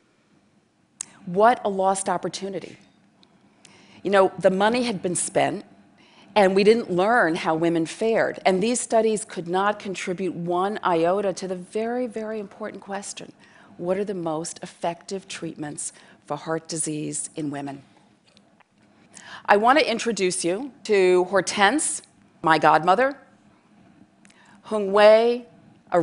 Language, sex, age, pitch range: Chinese, female, 40-59, 165-210 Hz